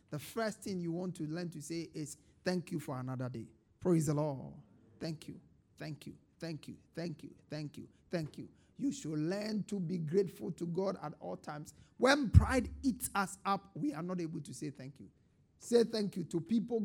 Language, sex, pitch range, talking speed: English, male, 165-225 Hz, 210 wpm